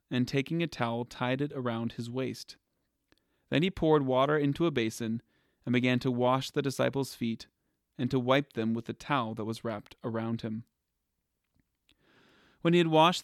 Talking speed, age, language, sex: 175 wpm, 30-49, English, male